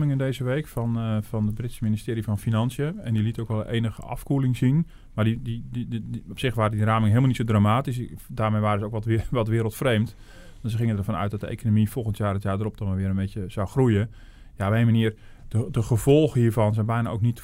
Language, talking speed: Dutch, 250 wpm